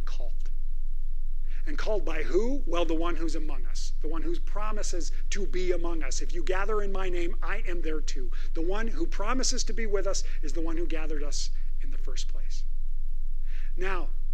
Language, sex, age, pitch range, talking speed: English, male, 40-59, 185-235 Hz, 200 wpm